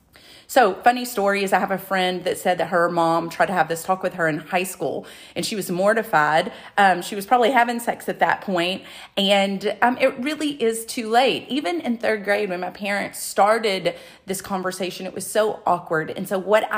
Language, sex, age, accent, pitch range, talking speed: English, female, 30-49, American, 185-245 Hz, 215 wpm